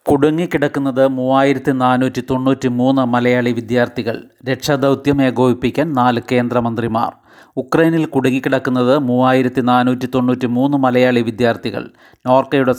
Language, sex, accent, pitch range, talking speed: Malayalam, male, native, 120-135 Hz, 90 wpm